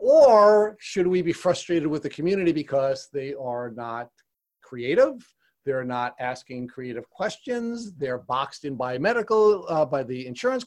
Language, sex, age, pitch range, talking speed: English, male, 40-59, 135-200 Hz, 150 wpm